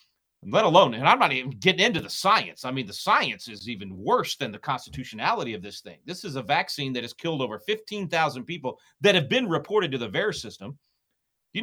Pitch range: 125-185 Hz